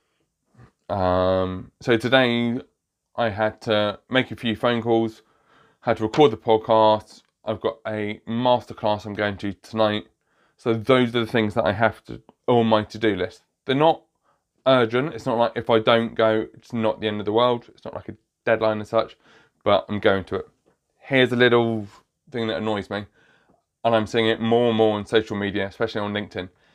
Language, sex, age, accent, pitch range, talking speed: English, male, 20-39, British, 105-125 Hz, 195 wpm